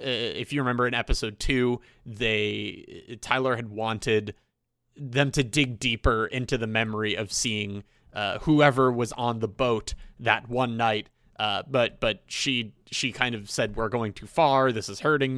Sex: male